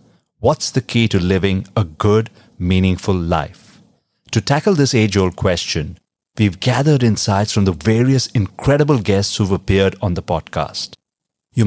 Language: English